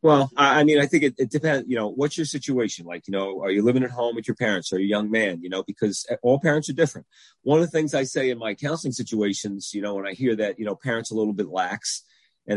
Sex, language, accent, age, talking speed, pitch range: male, English, American, 30-49, 285 wpm, 105-135 Hz